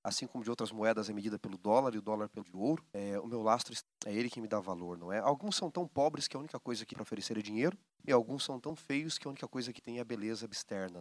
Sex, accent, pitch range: male, Brazilian, 110-150 Hz